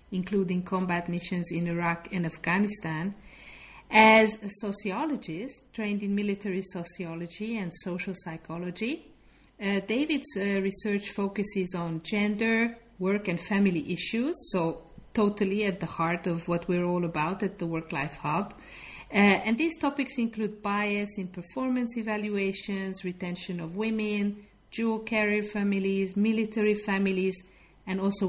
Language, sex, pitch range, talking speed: English, female, 180-220 Hz, 130 wpm